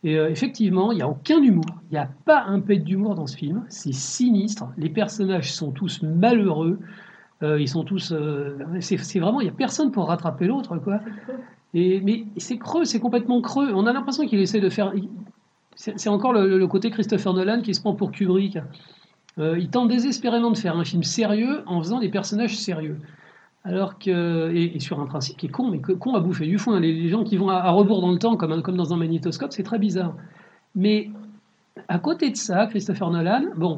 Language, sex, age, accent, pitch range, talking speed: French, male, 50-69, French, 170-220 Hz, 215 wpm